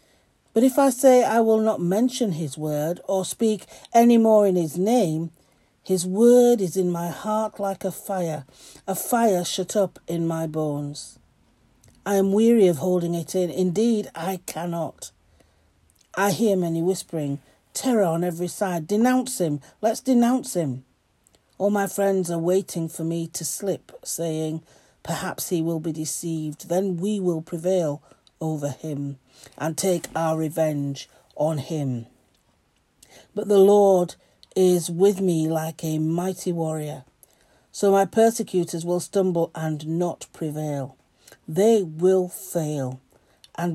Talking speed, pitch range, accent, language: 145 wpm, 155-195 Hz, British, English